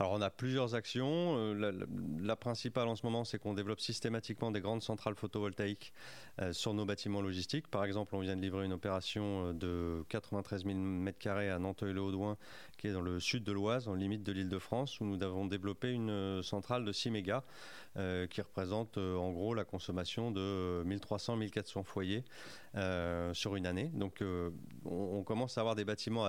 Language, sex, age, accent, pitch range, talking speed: French, male, 30-49, French, 95-110 Hz, 190 wpm